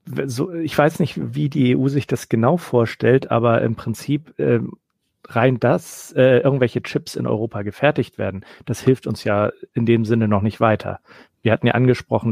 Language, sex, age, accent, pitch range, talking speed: German, male, 40-59, German, 110-125 Hz, 185 wpm